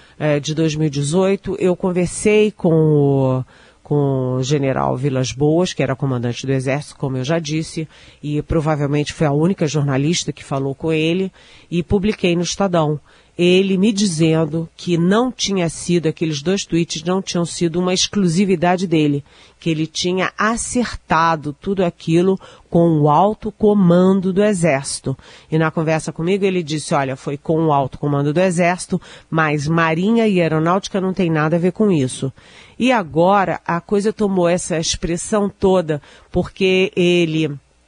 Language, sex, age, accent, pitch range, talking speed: Portuguese, female, 40-59, Brazilian, 150-185 Hz, 150 wpm